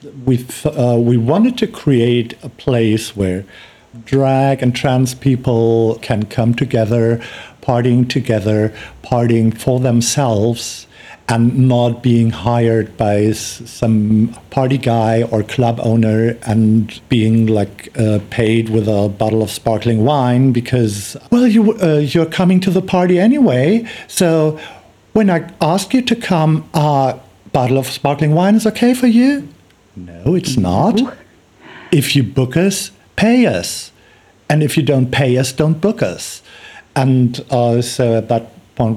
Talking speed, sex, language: 145 wpm, male, English